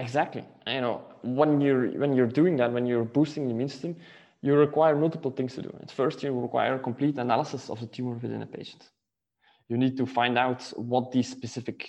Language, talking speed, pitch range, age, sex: English, 190 wpm, 120-150 Hz, 20-39, male